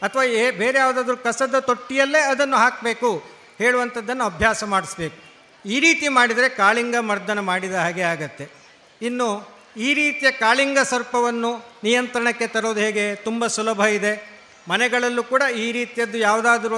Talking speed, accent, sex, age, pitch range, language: 125 wpm, native, male, 50-69, 220-270 Hz, Kannada